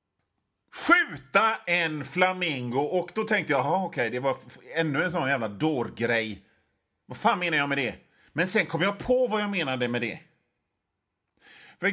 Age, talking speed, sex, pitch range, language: 30-49, 170 wpm, male, 130-195 Hz, Swedish